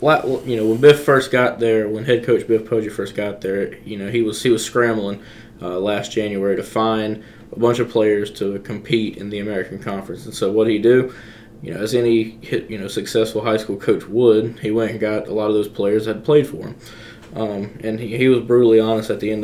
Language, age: English, 20-39